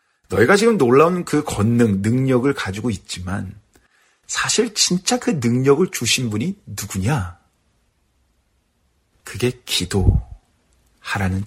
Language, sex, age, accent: Korean, male, 40-59, native